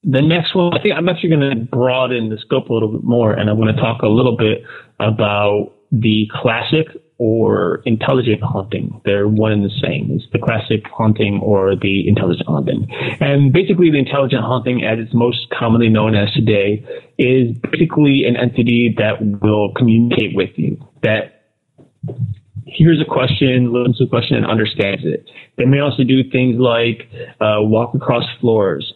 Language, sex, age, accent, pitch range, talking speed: English, male, 30-49, American, 105-130 Hz, 175 wpm